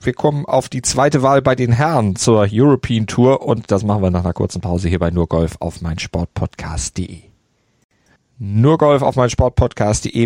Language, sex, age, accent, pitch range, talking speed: German, male, 40-59, German, 105-140 Hz, 185 wpm